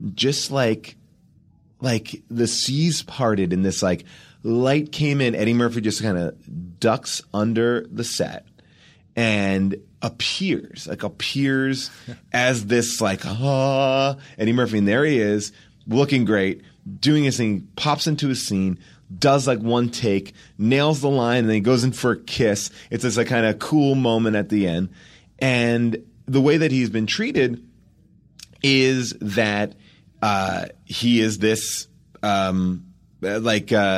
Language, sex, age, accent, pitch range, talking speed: English, male, 30-49, American, 110-145 Hz, 150 wpm